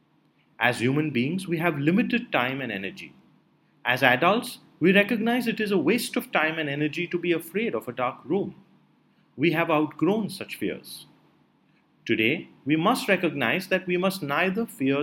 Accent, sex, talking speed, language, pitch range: Indian, male, 170 wpm, English, 135-185 Hz